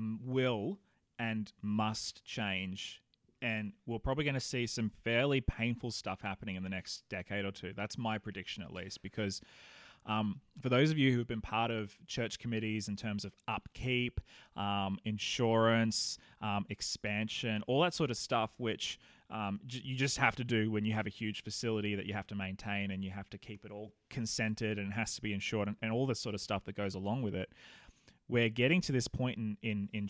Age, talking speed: 20-39, 205 wpm